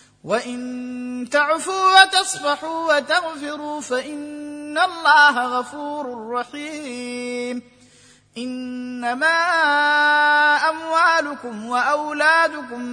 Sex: male